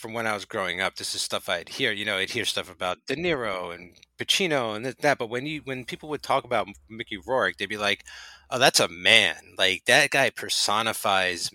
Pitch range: 100-145 Hz